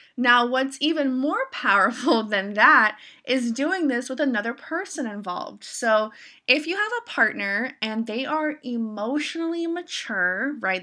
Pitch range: 195-265 Hz